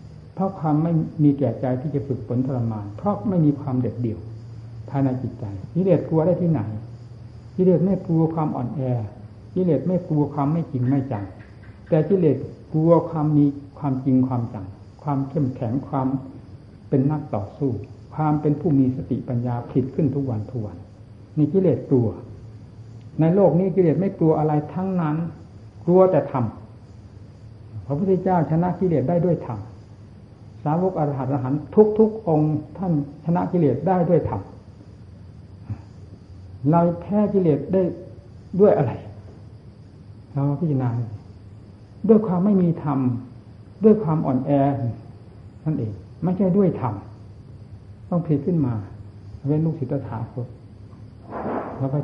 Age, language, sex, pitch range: 60-79, Thai, male, 110-155 Hz